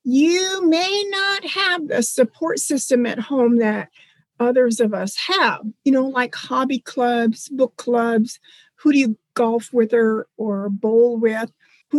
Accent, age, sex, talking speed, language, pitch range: American, 50-69, female, 150 wpm, English, 230-300 Hz